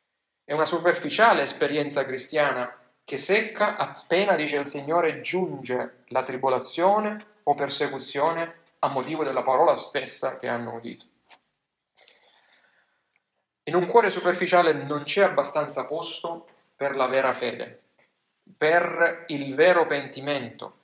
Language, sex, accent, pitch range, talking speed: Italian, male, native, 140-185 Hz, 115 wpm